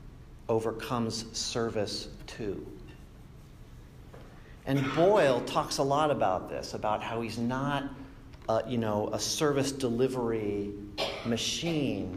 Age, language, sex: 50-69, English, male